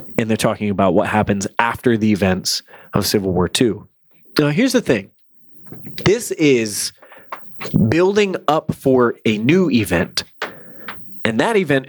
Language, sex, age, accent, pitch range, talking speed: English, male, 20-39, American, 115-165 Hz, 140 wpm